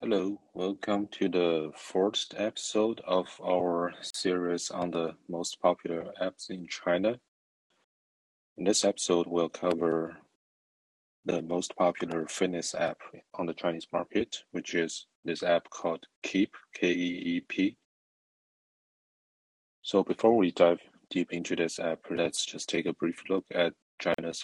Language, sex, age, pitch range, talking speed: English, male, 30-49, 85-90 Hz, 130 wpm